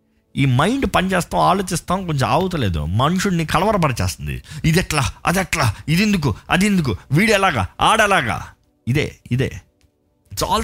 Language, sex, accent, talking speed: Telugu, male, native, 125 wpm